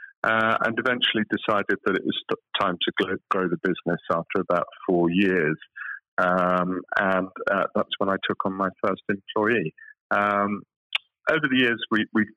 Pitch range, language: 90-110 Hz, English